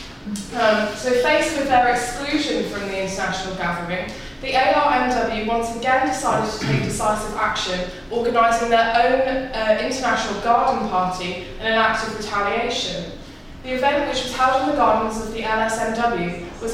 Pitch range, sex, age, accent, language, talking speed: 200-255 Hz, female, 20-39, British, English, 155 wpm